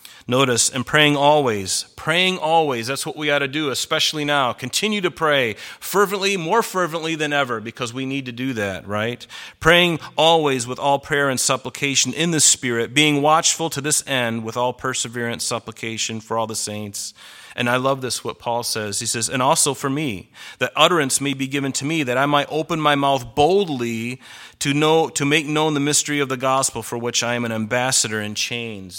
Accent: American